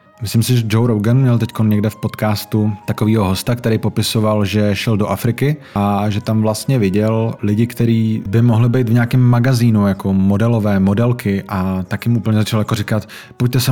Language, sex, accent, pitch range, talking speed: Czech, male, native, 105-120 Hz, 190 wpm